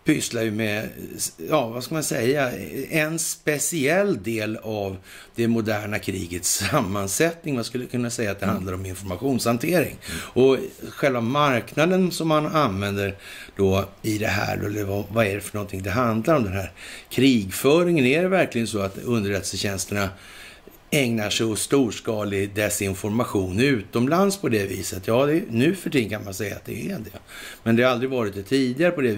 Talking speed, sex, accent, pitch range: 170 wpm, male, native, 100-130 Hz